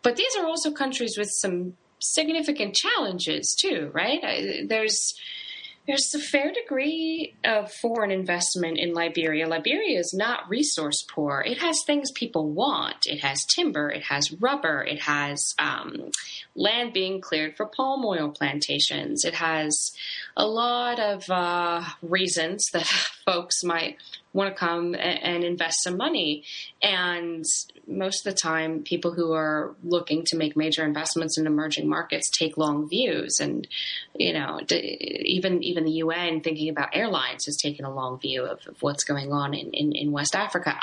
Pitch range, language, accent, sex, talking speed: 150-195 Hz, English, American, female, 160 wpm